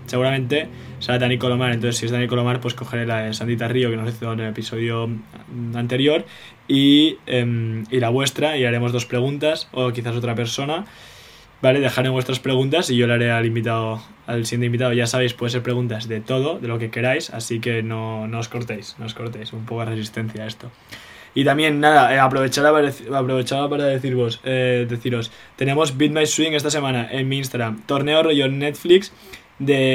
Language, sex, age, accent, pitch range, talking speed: English, male, 20-39, Spanish, 120-140 Hz, 195 wpm